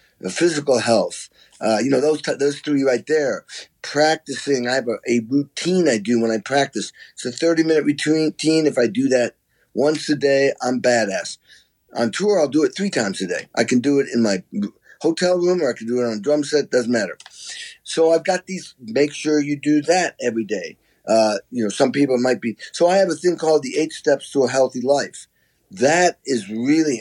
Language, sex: English, male